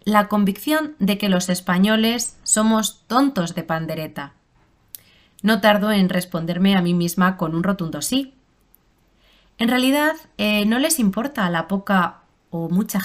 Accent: Spanish